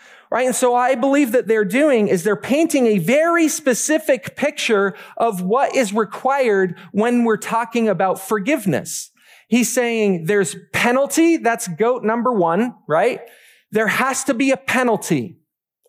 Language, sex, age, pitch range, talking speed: English, male, 40-59, 200-265 Hz, 145 wpm